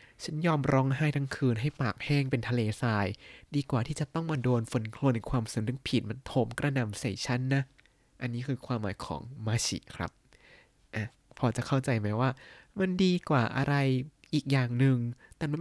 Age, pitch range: 20-39, 115-150 Hz